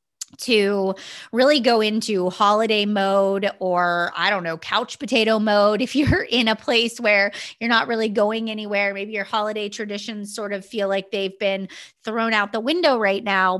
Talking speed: 175 wpm